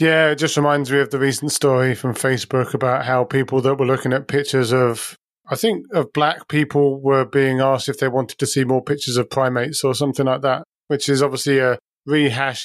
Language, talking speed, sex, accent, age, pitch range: English, 220 wpm, male, British, 30-49, 130-145 Hz